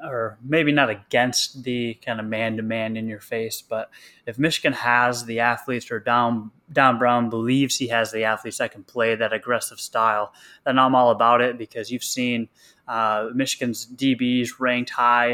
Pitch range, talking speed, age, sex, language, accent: 115-125 Hz, 175 wpm, 20-39, male, English, American